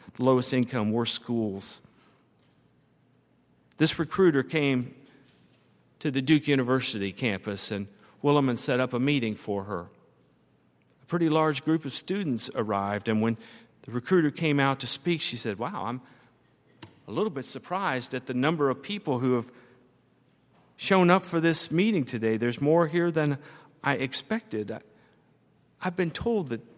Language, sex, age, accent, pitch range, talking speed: English, male, 50-69, American, 115-155 Hz, 150 wpm